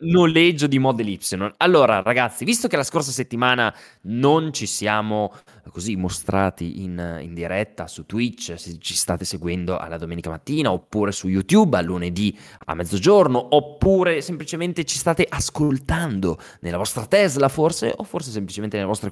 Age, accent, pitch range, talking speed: 20-39, native, 95-135 Hz, 155 wpm